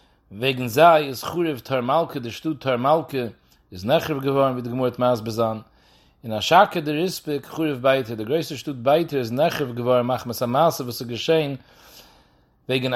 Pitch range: 120-170 Hz